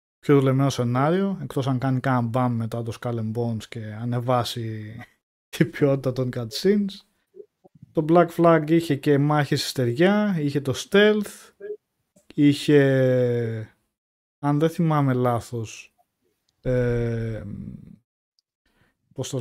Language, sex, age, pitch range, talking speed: Greek, male, 20-39, 120-180 Hz, 110 wpm